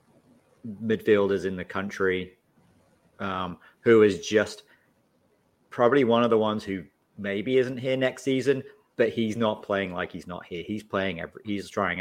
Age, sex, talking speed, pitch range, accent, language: 30-49, male, 160 wpm, 90-105 Hz, British, English